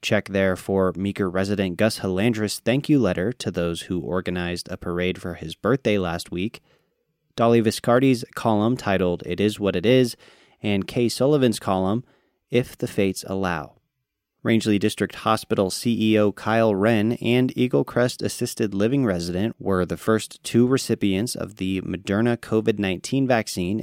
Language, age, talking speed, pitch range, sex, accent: English, 30-49, 150 wpm, 95-115 Hz, male, American